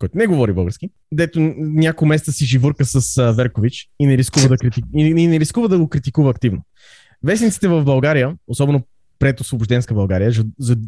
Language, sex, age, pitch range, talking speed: Bulgarian, male, 20-39, 130-175 Hz, 165 wpm